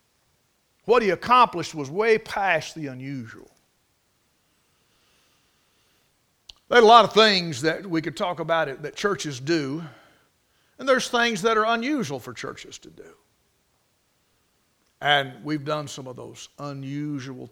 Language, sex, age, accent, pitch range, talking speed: English, male, 50-69, American, 155-230 Hz, 135 wpm